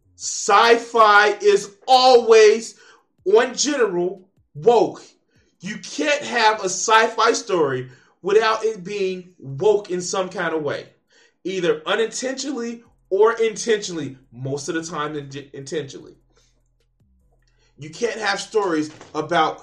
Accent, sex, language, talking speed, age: American, male, English, 105 wpm, 20-39